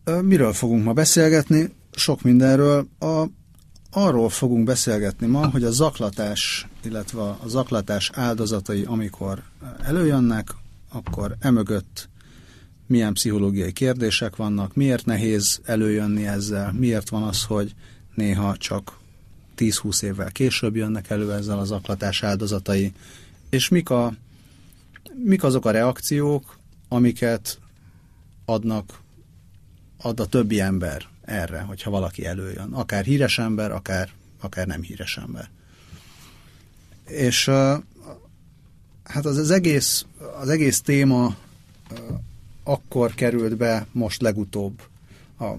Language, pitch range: Hungarian, 100-125 Hz